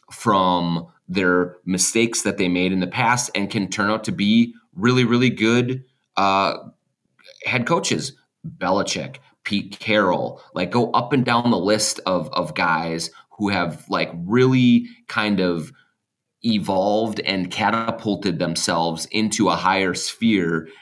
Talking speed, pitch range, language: 140 wpm, 85-110 Hz, English